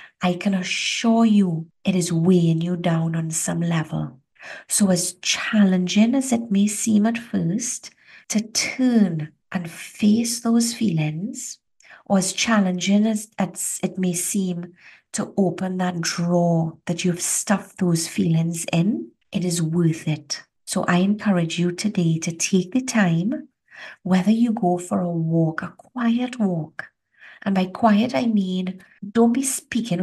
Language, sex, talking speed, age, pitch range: English, female, 150 wpm, 50-69, 175-220 Hz